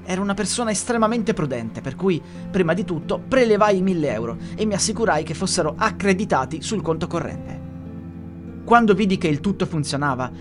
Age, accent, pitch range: 30-49, native, 145-195 Hz